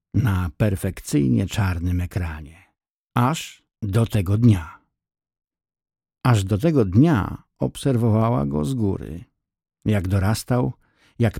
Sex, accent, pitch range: male, native, 95-115 Hz